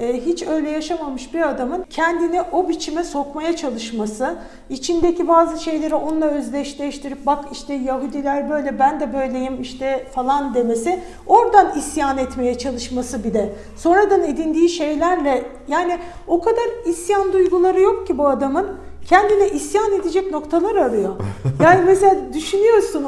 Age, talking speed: 50-69, 135 wpm